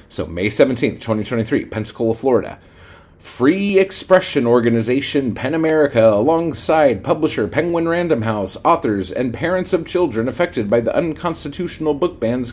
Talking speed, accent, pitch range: 130 wpm, American, 125-195 Hz